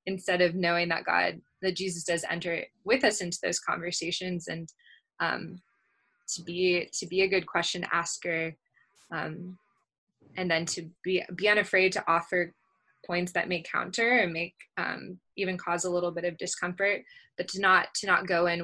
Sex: female